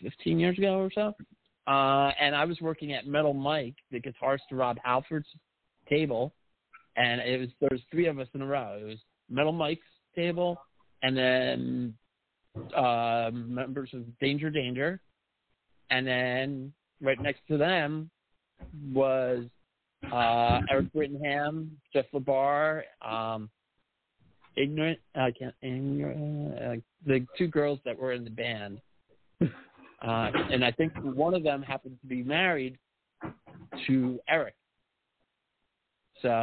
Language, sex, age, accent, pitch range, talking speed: English, male, 50-69, American, 120-150 Hz, 135 wpm